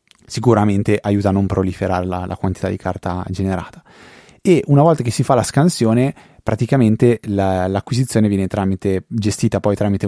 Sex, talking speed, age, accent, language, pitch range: male, 155 wpm, 20-39, native, Italian, 95-110 Hz